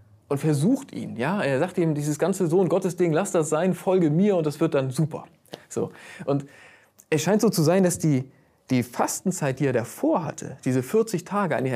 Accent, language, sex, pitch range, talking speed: German, German, male, 150-195 Hz, 200 wpm